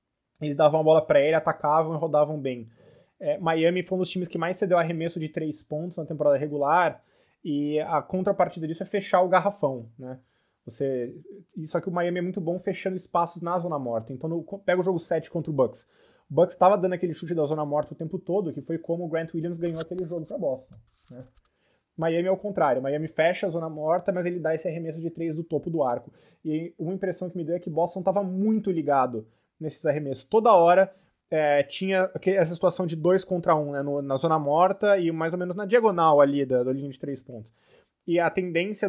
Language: Portuguese